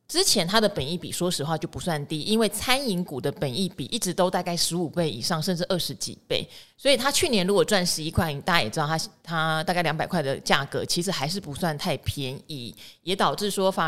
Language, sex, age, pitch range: Chinese, female, 20-39, 160-205 Hz